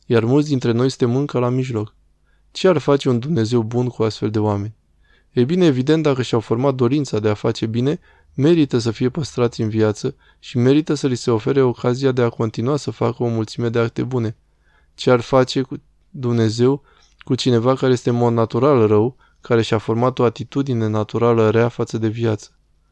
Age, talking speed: 20-39, 195 wpm